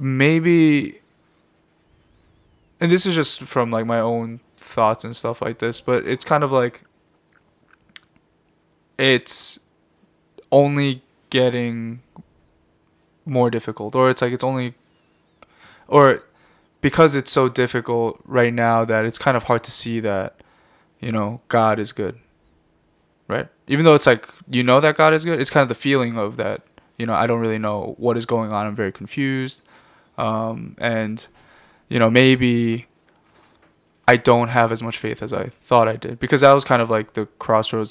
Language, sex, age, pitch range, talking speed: English, male, 20-39, 110-130 Hz, 165 wpm